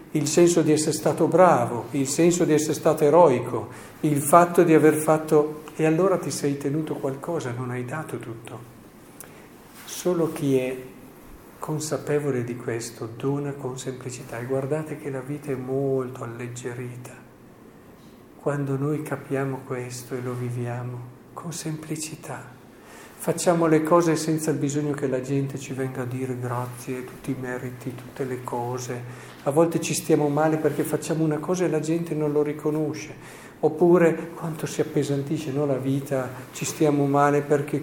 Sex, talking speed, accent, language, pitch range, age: male, 155 wpm, native, Italian, 130-155 Hz, 50-69